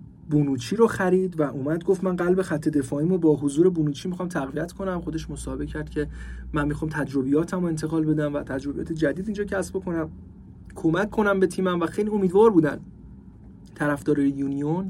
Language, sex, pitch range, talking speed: Persian, male, 155-190 Hz, 170 wpm